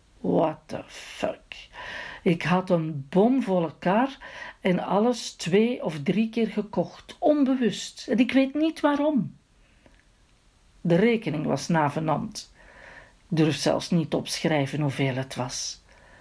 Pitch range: 170-245 Hz